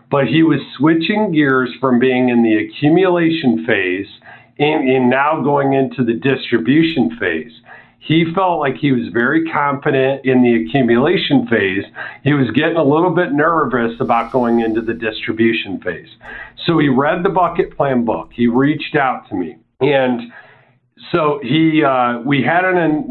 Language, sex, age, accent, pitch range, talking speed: English, male, 50-69, American, 125-160 Hz, 165 wpm